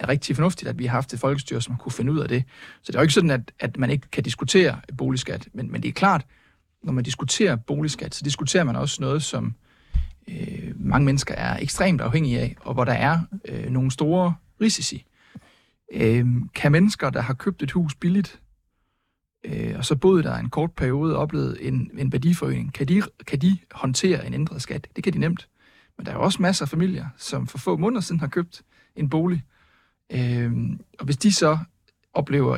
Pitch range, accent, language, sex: 130-170 Hz, native, Danish, male